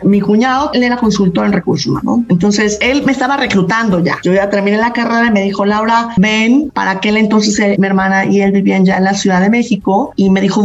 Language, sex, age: Spanish, female, 30-49